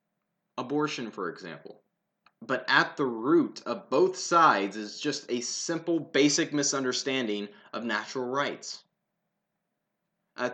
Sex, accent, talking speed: male, American, 115 wpm